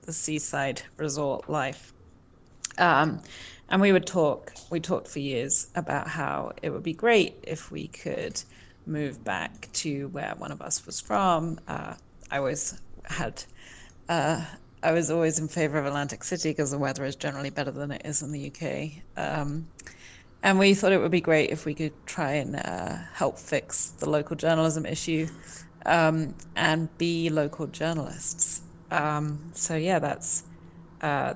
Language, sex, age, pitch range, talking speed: English, female, 30-49, 145-165 Hz, 165 wpm